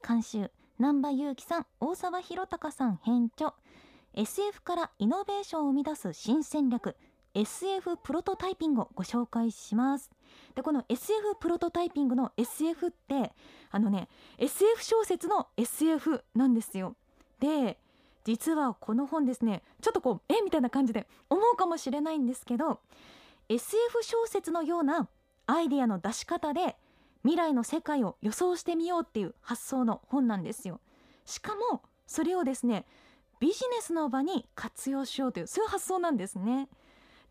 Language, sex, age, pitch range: Japanese, female, 20-39, 245-350 Hz